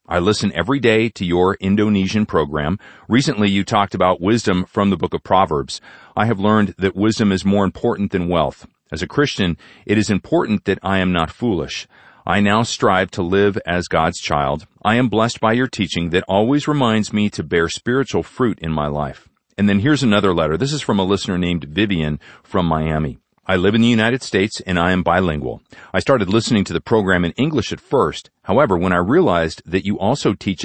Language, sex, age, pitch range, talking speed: English, male, 40-59, 85-105 Hz, 210 wpm